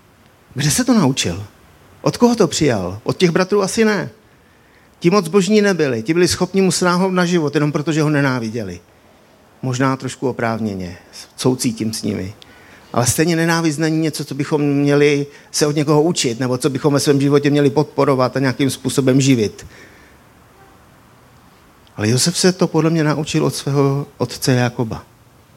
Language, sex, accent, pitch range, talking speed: Czech, male, native, 120-160 Hz, 160 wpm